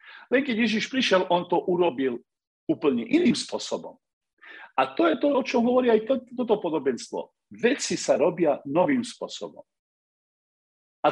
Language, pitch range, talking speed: Slovak, 165-245 Hz, 145 wpm